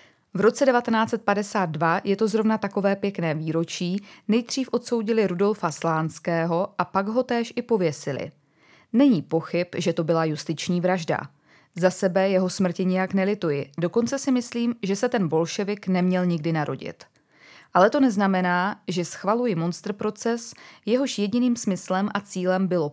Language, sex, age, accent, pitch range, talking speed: Czech, female, 20-39, native, 165-210 Hz, 140 wpm